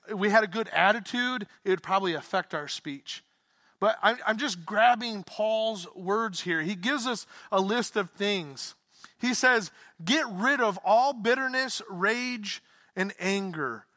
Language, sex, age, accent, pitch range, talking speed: English, male, 30-49, American, 165-210 Hz, 150 wpm